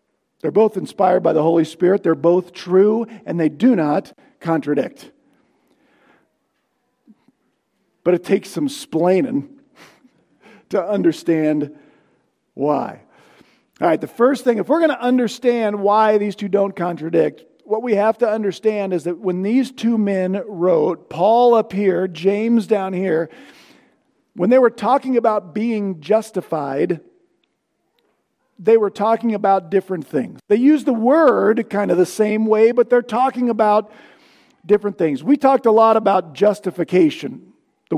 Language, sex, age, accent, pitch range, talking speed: English, male, 50-69, American, 180-235 Hz, 145 wpm